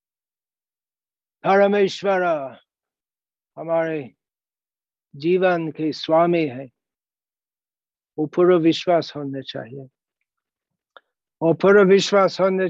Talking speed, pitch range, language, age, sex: 60 wpm, 155-180 Hz, Hindi, 60-79, male